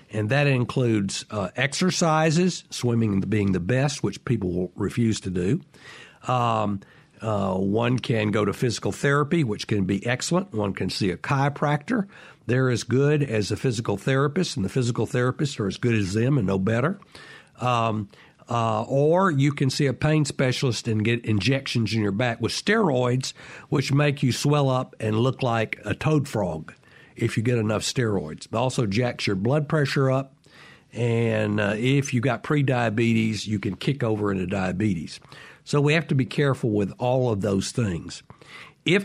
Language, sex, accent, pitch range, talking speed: English, male, American, 110-145 Hz, 175 wpm